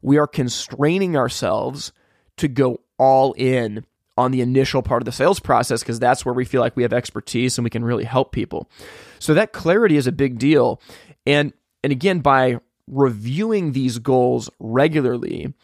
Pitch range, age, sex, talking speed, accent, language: 125-150 Hz, 20-39, male, 175 wpm, American, English